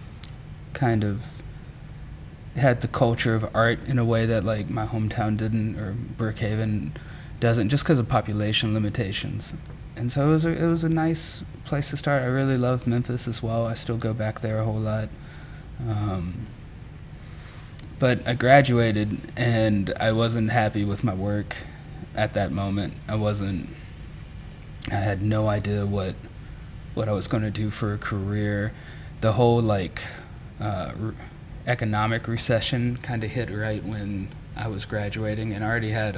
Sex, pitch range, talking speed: male, 105-125 Hz, 160 wpm